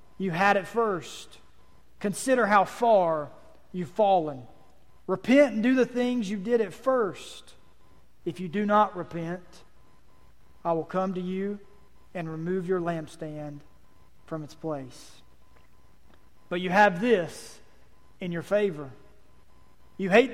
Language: English